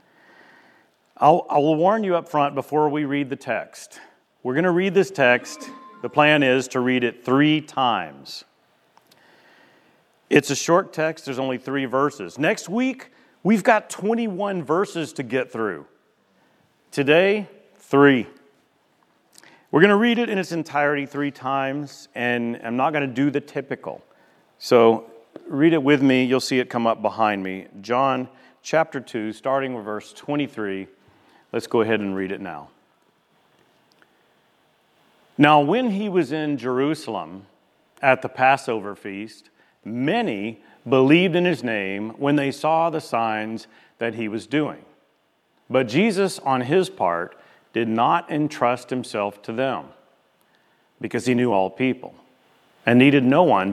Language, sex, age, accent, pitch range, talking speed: English, male, 40-59, American, 115-155 Hz, 145 wpm